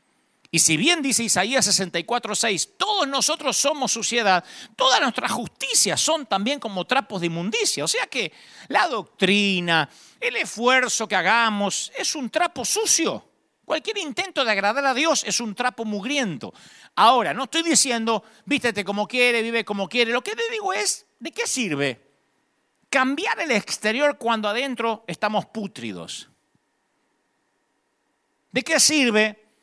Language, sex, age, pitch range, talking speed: Spanish, male, 50-69, 190-270 Hz, 140 wpm